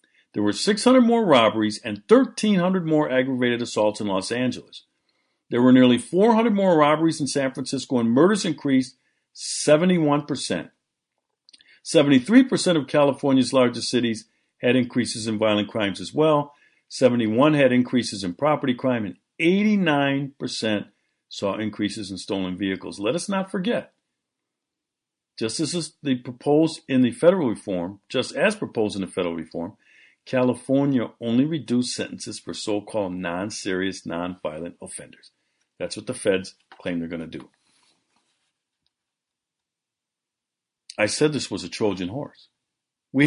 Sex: male